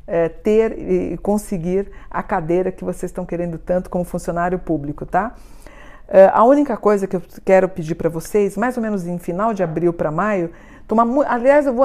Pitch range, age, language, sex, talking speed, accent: 175-215 Hz, 50-69, Portuguese, female, 190 wpm, Brazilian